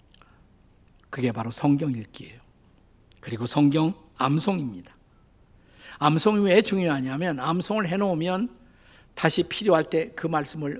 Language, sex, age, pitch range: Korean, male, 50-69, 120-165 Hz